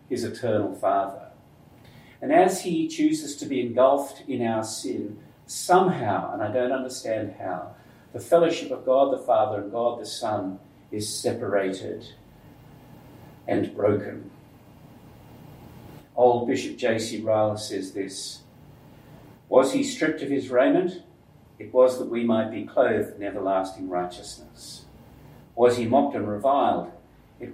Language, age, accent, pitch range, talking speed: English, 50-69, Australian, 105-140 Hz, 135 wpm